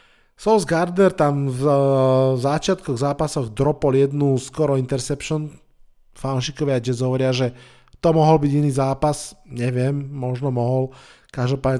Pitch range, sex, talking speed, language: 120-140 Hz, male, 120 wpm, Slovak